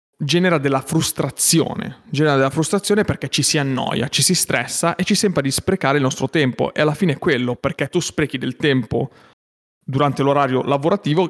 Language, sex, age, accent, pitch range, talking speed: Italian, male, 30-49, native, 130-155 Hz, 180 wpm